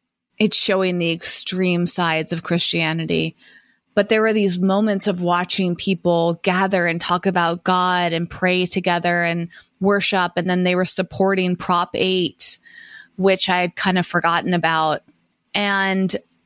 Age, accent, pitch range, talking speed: 20-39, American, 180-215 Hz, 145 wpm